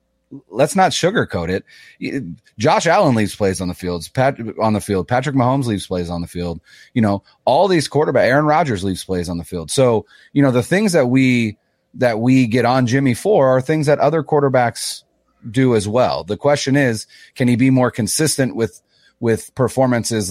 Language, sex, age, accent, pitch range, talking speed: English, male, 30-49, American, 105-135 Hz, 195 wpm